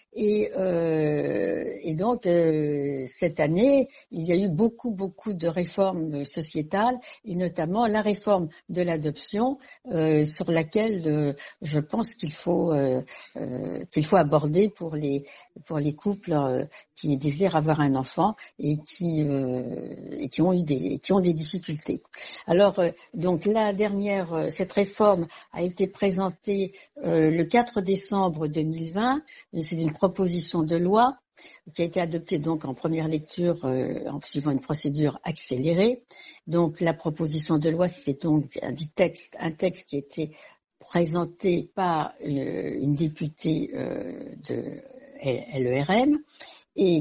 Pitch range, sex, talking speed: 155-195 Hz, female, 145 wpm